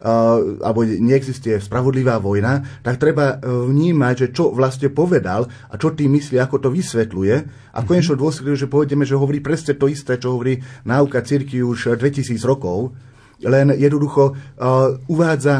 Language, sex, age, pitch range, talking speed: Slovak, male, 30-49, 110-145 Hz, 150 wpm